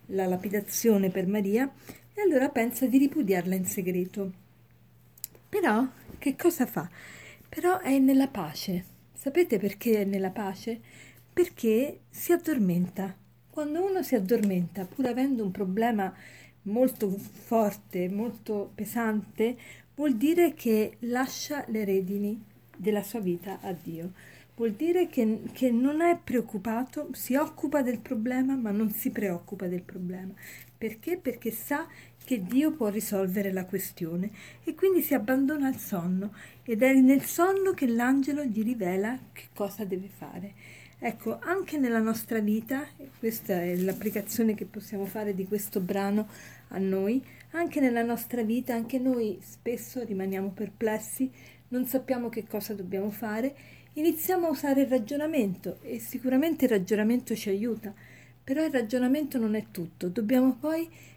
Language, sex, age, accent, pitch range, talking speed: Italian, female, 40-59, native, 200-265 Hz, 140 wpm